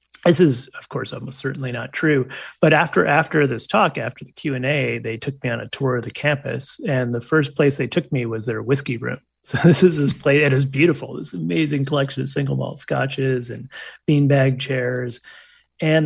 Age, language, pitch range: 30-49, English, 115-140 Hz